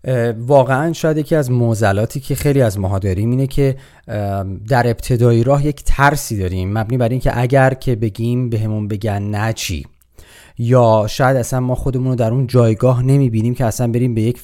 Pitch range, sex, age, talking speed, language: 110-130 Hz, male, 30-49, 180 wpm, Persian